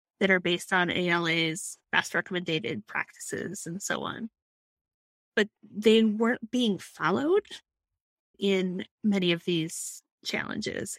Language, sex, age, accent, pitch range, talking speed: English, female, 30-49, American, 185-220 Hz, 115 wpm